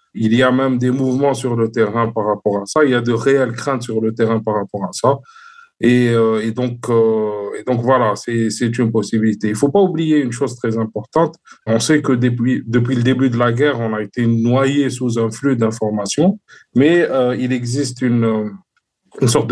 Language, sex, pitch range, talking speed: French, male, 115-135 Hz, 220 wpm